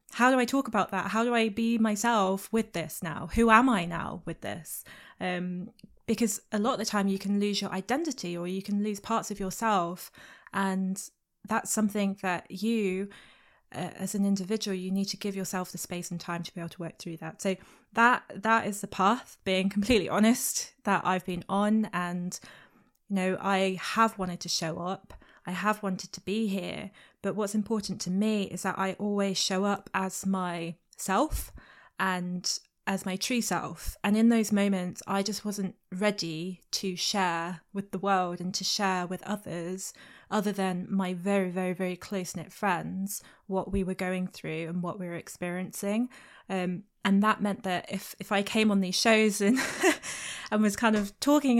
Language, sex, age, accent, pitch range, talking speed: English, female, 20-39, British, 185-215 Hz, 195 wpm